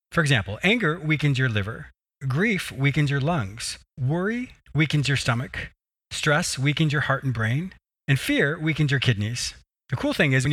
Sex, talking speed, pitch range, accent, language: male, 170 wpm, 115-155 Hz, American, English